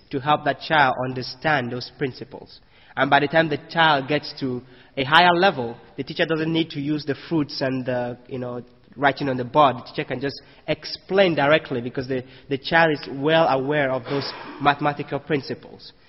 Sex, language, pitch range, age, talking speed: male, English, 130-155 Hz, 30-49, 190 wpm